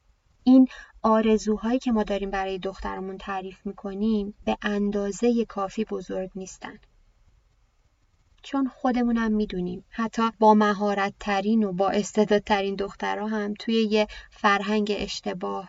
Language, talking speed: Persian, 115 wpm